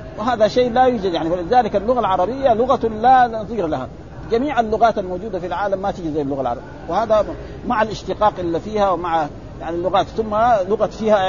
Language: Arabic